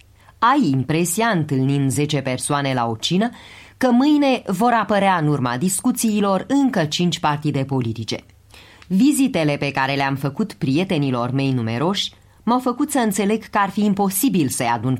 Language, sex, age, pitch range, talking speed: Romanian, female, 30-49, 125-200 Hz, 150 wpm